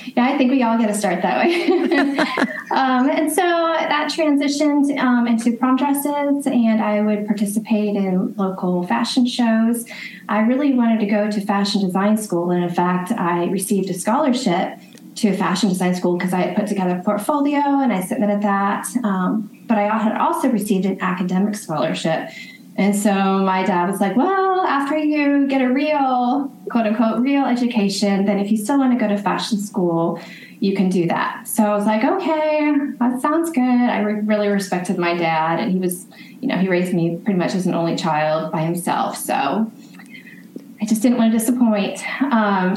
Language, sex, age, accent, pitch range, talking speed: English, female, 20-39, American, 195-260 Hz, 185 wpm